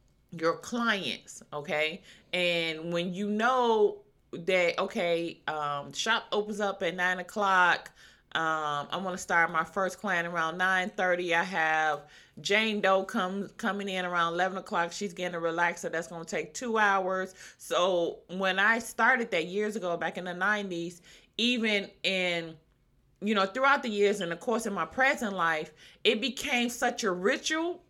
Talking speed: 165 wpm